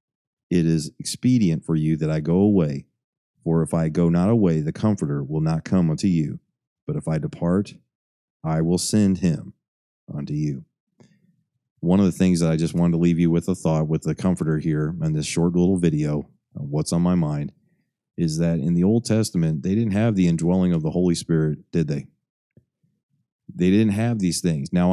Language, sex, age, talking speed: English, male, 30-49, 200 wpm